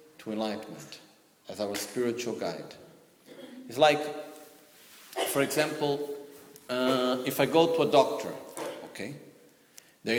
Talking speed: 105 wpm